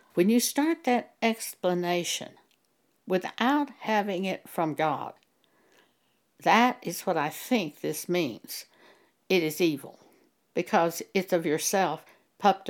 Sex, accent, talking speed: female, American, 120 wpm